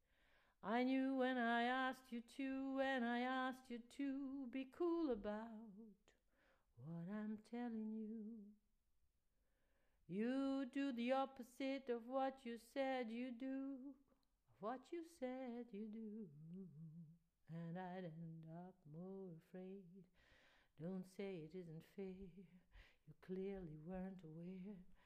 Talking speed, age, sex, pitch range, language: 120 wpm, 60-79, female, 210-275 Hz, English